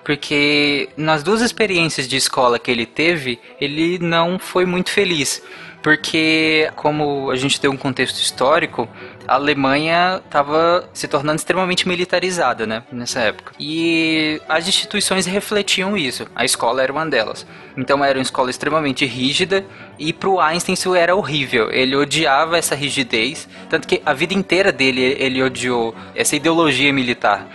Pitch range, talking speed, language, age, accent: 130-165 Hz, 150 wpm, Portuguese, 20-39, Brazilian